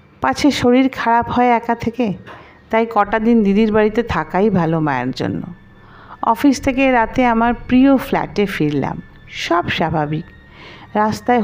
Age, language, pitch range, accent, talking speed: 50-69, Bengali, 175-270 Hz, native, 130 wpm